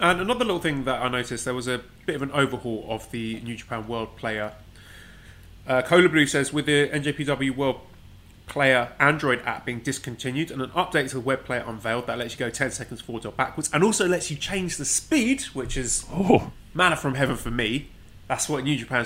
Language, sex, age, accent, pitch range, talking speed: English, male, 20-39, British, 110-135 Hz, 215 wpm